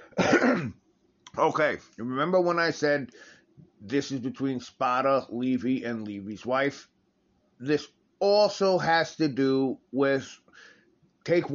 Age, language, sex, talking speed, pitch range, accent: 30-49, English, male, 105 wpm, 115-155 Hz, American